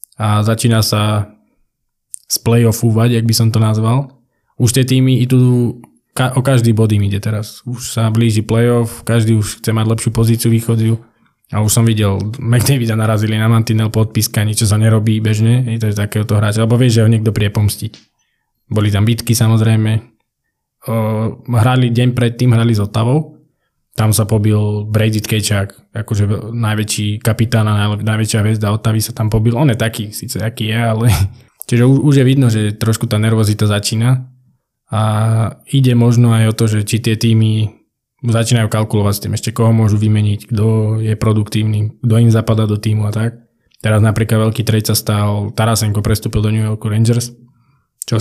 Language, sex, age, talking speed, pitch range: Slovak, male, 20-39, 170 wpm, 110-120 Hz